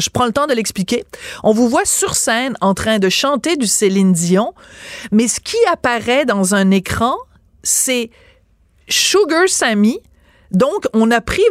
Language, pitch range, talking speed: French, 195-260 Hz, 165 wpm